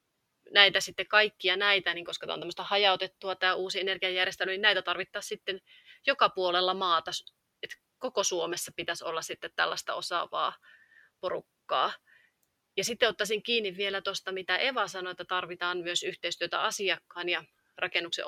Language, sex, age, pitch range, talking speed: Finnish, female, 30-49, 180-200 Hz, 150 wpm